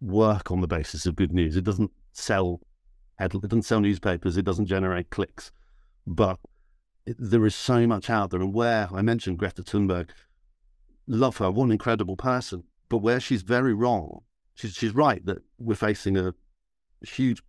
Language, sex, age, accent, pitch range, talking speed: English, male, 50-69, British, 95-110 Hz, 175 wpm